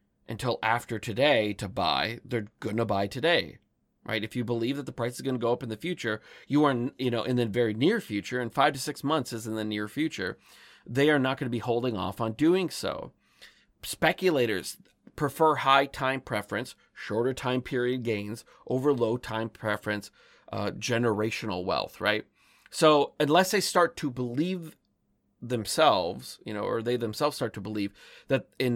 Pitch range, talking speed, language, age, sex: 110-140 Hz, 180 wpm, English, 30-49, male